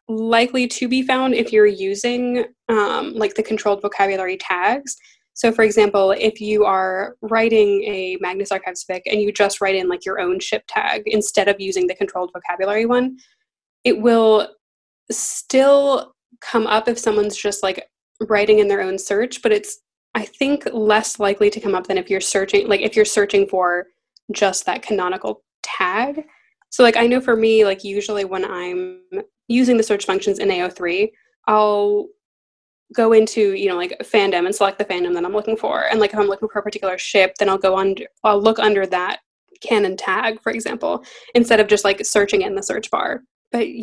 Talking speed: 190 wpm